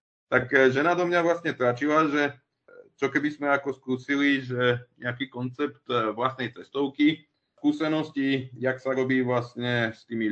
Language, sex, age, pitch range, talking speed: Czech, male, 30-49, 110-135 Hz, 140 wpm